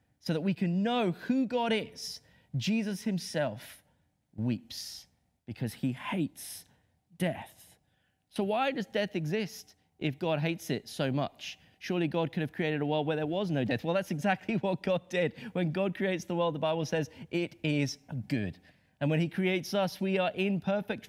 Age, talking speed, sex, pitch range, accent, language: 30-49, 180 wpm, male, 160-225 Hz, British, English